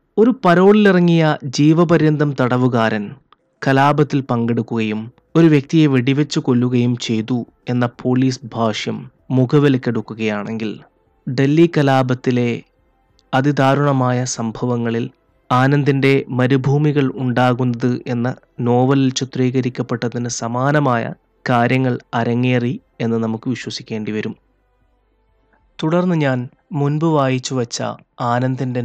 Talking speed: 80 wpm